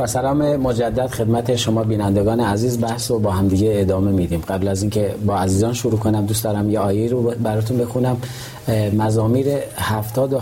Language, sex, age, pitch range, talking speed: Persian, male, 40-59, 105-125 Hz, 175 wpm